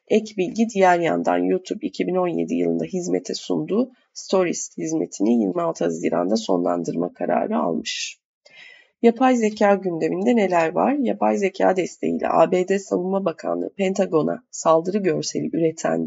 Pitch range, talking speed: 165-220 Hz, 115 wpm